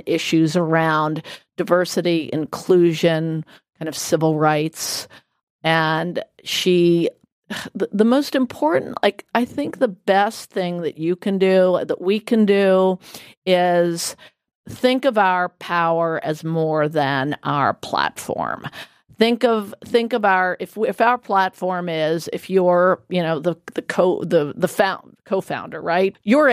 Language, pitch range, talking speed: English, 160-195 Hz, 135 wpm